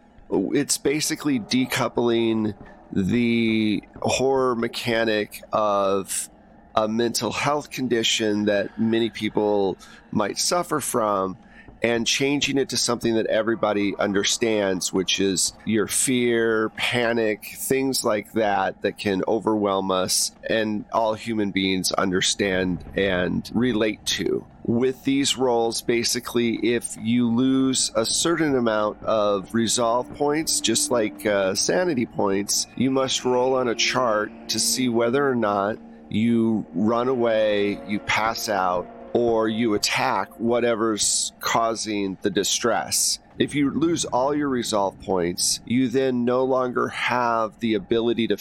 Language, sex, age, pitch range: English, male, 30-49, 105-125 Hz